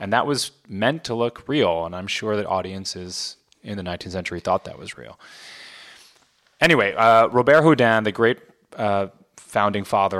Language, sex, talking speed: English, male, 170 wpm